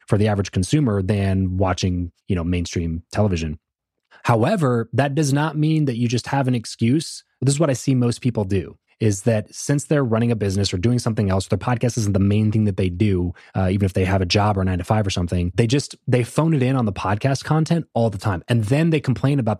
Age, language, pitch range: 20-39, English, 105-145 Hz